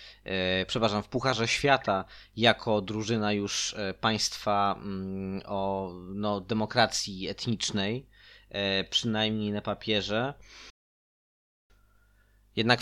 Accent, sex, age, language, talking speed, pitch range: native, male, 20-39, Polish, 75 wpm, 105-120 Hz